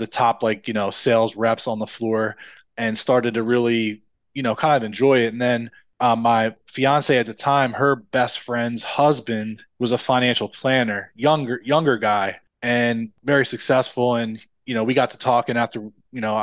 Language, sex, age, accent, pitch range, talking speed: English, male, 20-39, American, 110-125 Hz, 190 wpm